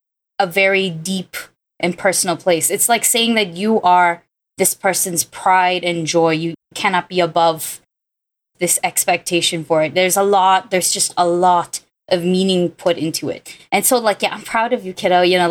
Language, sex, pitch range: English, female, 175-220 Hz